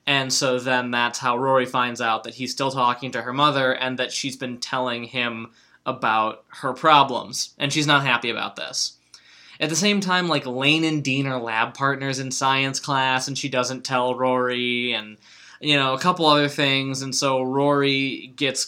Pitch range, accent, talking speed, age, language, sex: 120-140 Hz, American, 195 wpm, 20-39, English, male